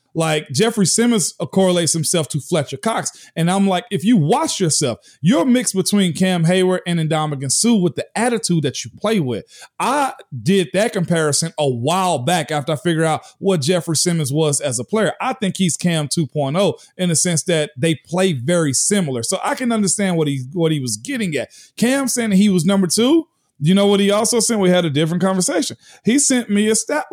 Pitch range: 160-210 Hz